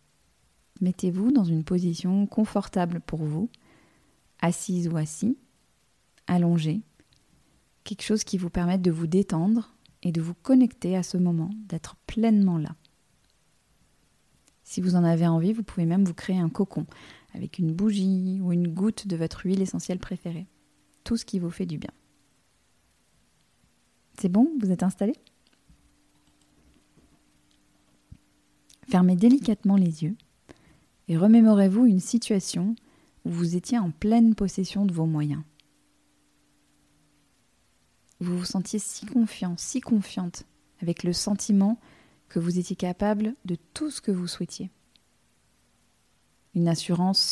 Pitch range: 170-210 Hz